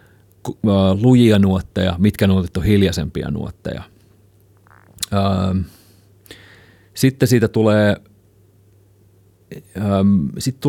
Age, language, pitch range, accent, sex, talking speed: 30-49, Finnish, 95-105 Hz, native, male, 60 wpm